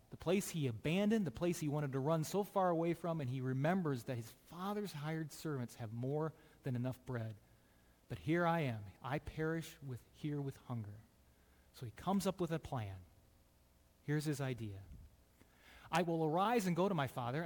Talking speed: 190 wpm